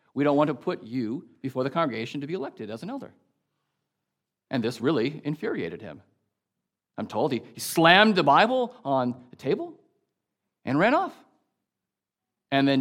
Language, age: English, 40-59